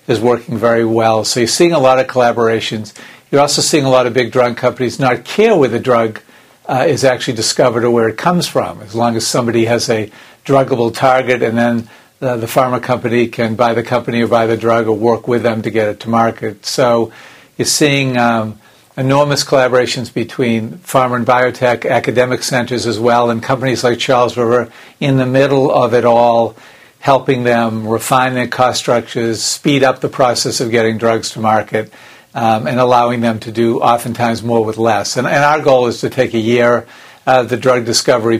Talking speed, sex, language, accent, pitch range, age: 200 wpm, male, English, American, 115-130 Hz, 50-69